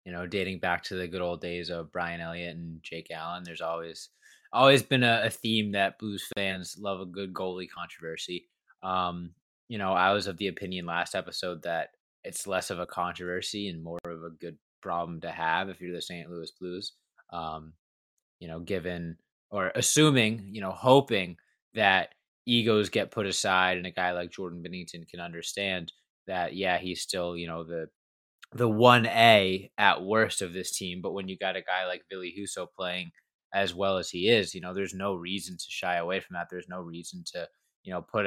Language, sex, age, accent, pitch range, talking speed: English, male, 20-39, American, 85-100 Hz, 200 wpm